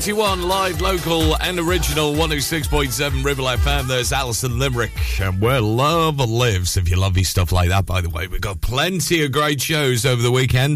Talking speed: 185 wpm